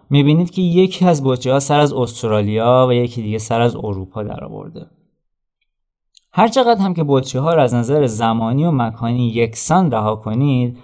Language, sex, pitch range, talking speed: Persian, male, 120-160 Hz, 160 wpm